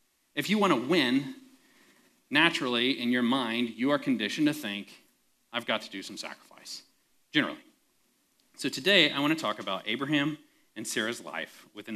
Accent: American